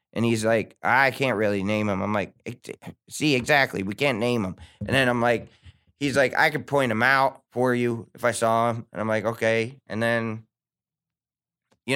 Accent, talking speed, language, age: American, 200 wpm, English, 20-39